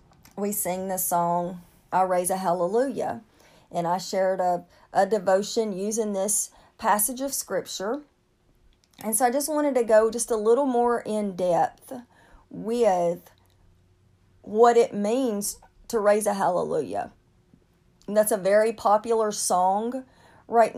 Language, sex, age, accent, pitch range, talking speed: English, female, 40-59, American, 155-235 Hz, 135 wpm